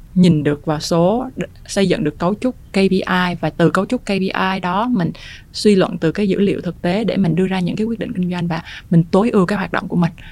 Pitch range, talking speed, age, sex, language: 165-210 Hz, 255 wpm, 20-39, female, Vietnamese